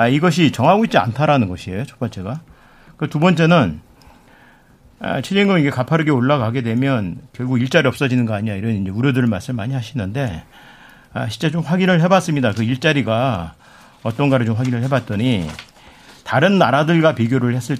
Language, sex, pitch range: Korean, male, 115-155 Hz